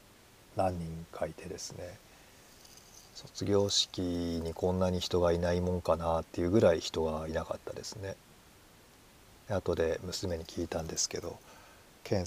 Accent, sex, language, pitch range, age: native, male, Japanese, 85-95 Hz, 40-59